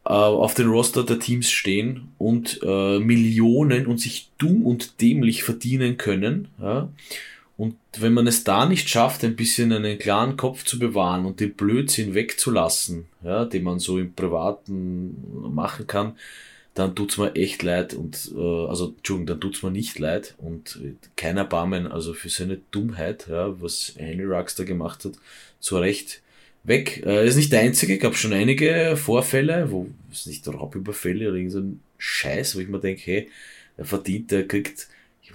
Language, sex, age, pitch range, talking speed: German, male, 20-39, 95-120 Hz, 170 wpm